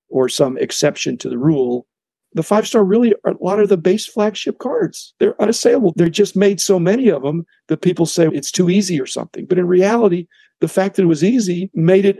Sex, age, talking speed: male, 50-69, 220 wpm